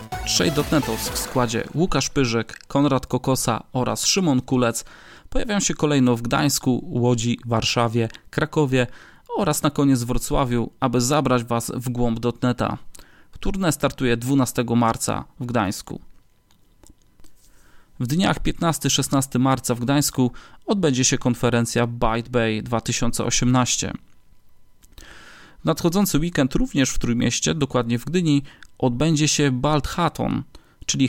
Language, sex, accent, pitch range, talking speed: Polish, male, native, 120-145 Hz, 115 wpm